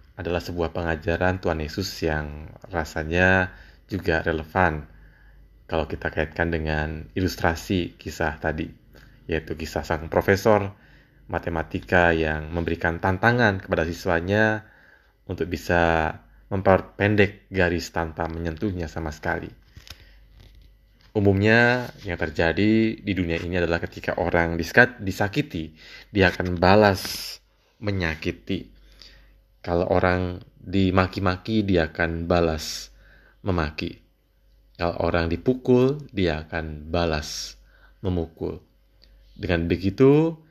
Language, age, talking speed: Indonesian, 20-39, 95 wpm